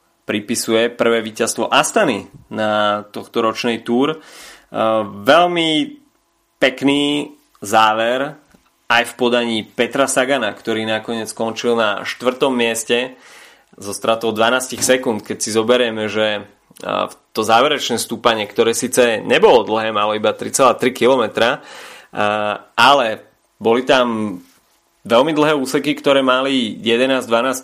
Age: 20-39